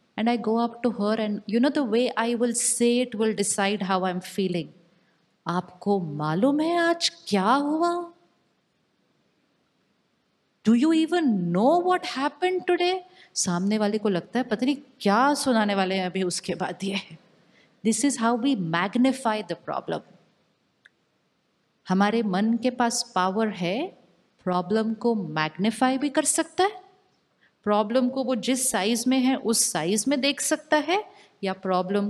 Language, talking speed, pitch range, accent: Hindi, 155 wpm, 195-290 Hz, native